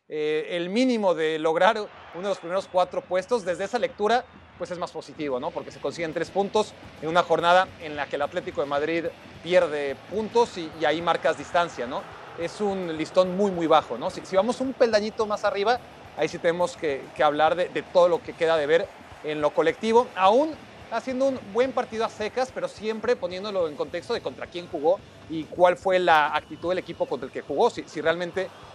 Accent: Mexican